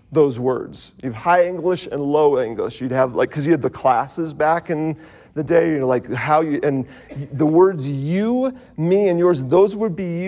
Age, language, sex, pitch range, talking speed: 40-59, English, male, 140-180 Hz, 210 wpm